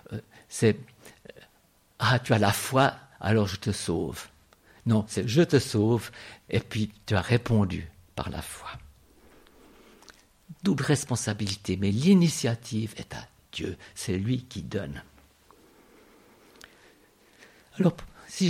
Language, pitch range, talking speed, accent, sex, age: French, 100-145 Hz, 115 wpm, French, male, 60-79